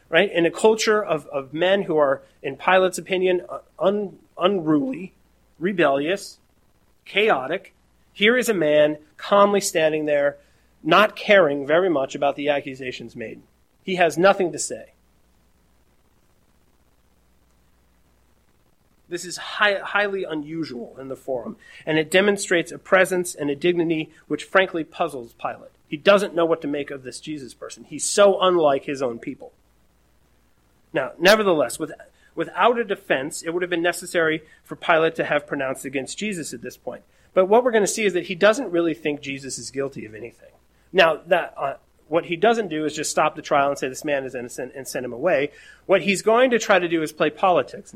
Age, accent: 30-49, American